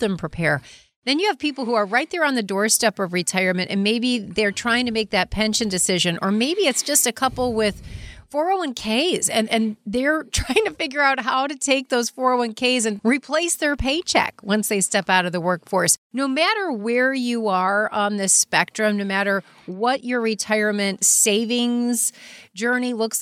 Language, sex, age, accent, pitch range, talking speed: English, female, 40-59, American, 200-245 Hz, 185 wpm